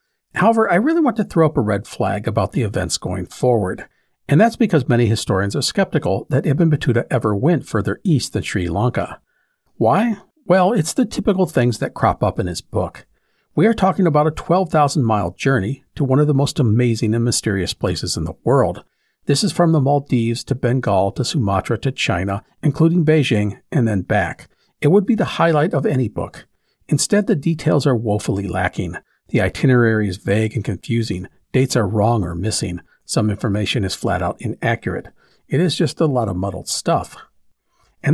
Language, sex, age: English, male, 50-69